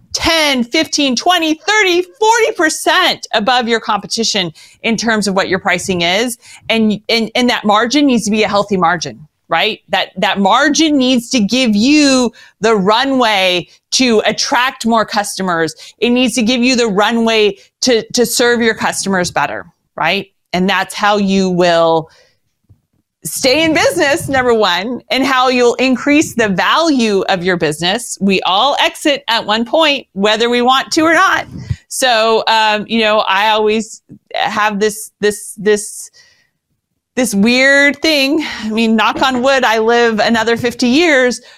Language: English